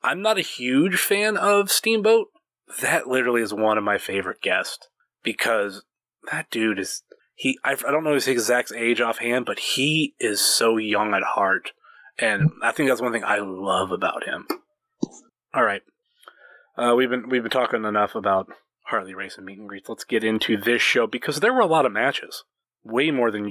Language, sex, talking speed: English, male, 190 wpm